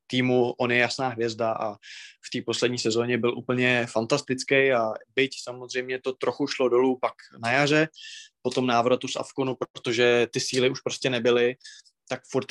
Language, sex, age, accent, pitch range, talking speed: Czech, male, 20-39, native, 120-135 Hz, 170 wpm